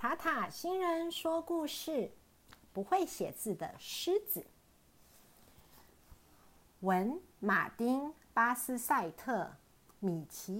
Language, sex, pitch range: Chinese, female, 190-310 Hz